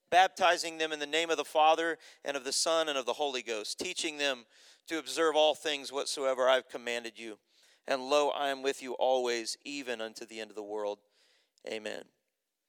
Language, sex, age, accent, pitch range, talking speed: English, male, 40-59, American, 130-170 Hz, 205 wpm